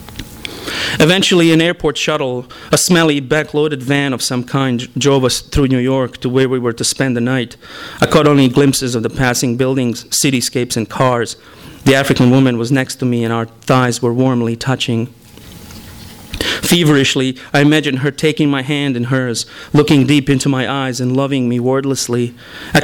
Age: 30-49